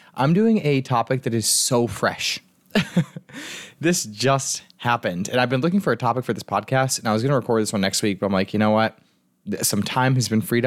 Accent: American